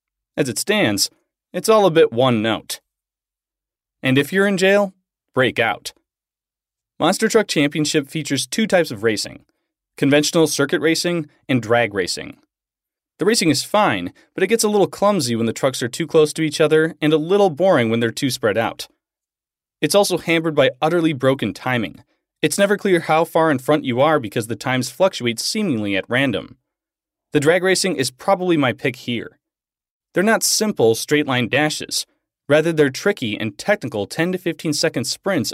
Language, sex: English, male